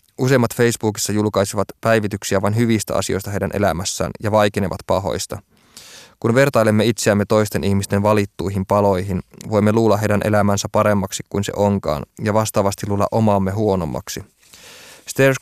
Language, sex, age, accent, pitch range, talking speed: Finnish, male, 20-39, native, 100-110 Hz, 130 wpm